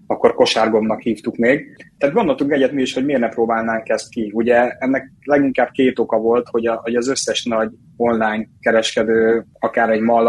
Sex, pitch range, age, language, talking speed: male, 110-130 Hz, 20-39, Hungarian, 185 wpm